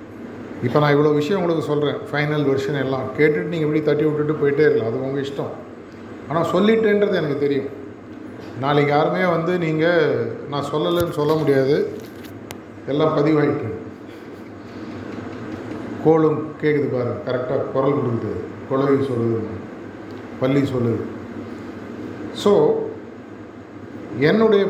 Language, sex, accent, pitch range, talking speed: Tamil, male, native, 135-160 Hz, 110 wpm